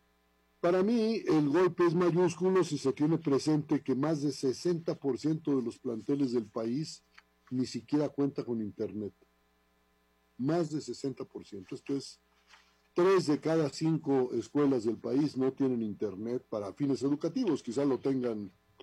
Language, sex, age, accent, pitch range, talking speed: Spanish, male, 50-69, Mexican, 110-150 Hz, 145 wpm